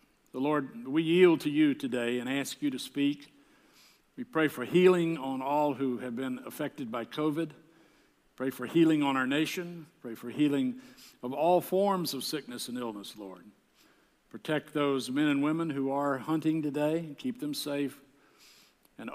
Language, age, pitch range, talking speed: English, 60-79, 140-175 Hz, 170 wpm